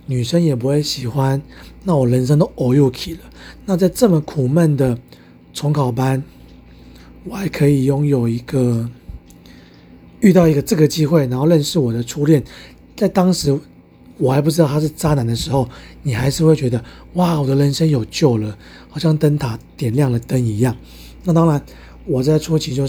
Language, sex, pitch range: Chinese, male, 125-160 Hz